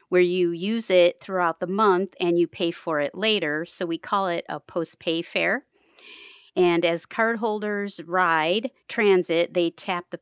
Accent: American